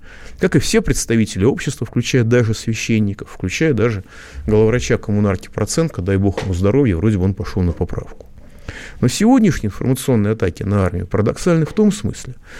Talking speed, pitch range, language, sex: 155 wpm, 100-150 Hz, Russian, male